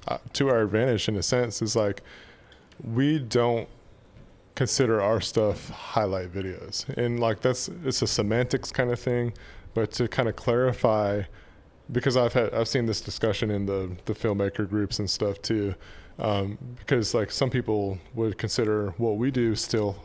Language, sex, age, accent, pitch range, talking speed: English, male, 20-39, American, 100-120 Hz, 165 wpm